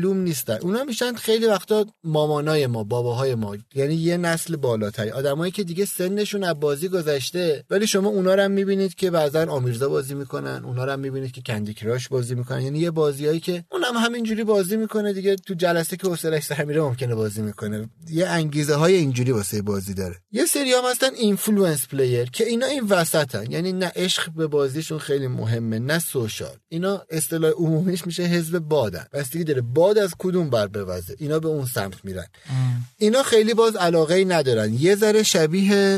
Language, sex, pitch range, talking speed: Persian, male, 125-190 Hz, 185 wpm